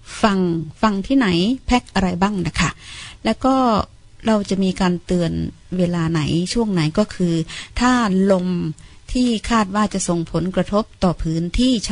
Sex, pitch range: female, 170-225 Hz